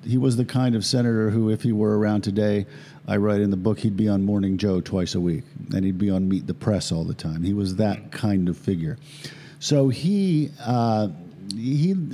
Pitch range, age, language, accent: 95-140 Hz, 50-69, English, American